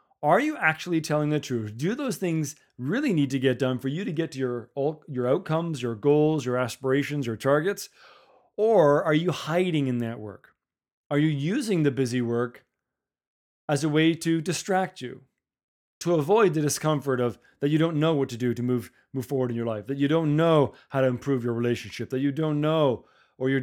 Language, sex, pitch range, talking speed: English, male, 125-155 Hz, 205 wpm